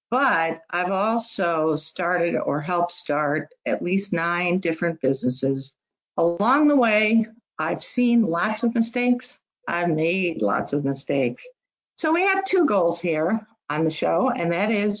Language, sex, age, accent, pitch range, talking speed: English, female, 50-69, American, 170-275 Hz, 150 wpm